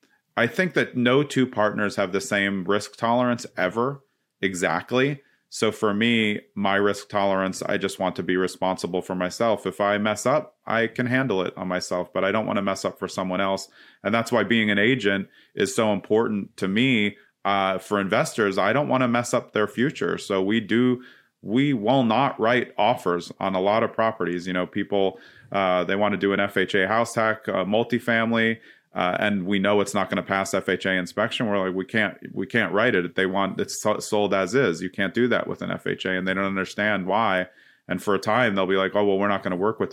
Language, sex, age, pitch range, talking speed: English, male, 30-49, 95-115 Hz, 225 wpm